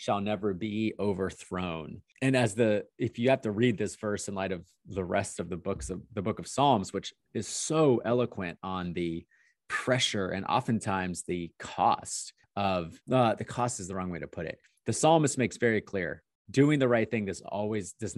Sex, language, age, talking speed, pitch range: male, English, 30-49, 200 wpm, 95-120 Hz